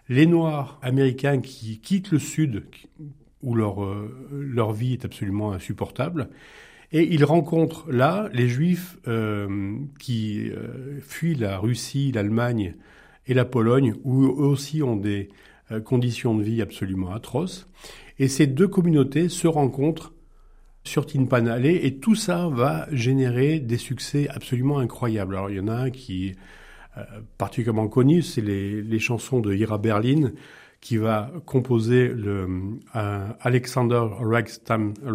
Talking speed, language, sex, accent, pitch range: 140 wpm, French, male, French, 110-145 Hz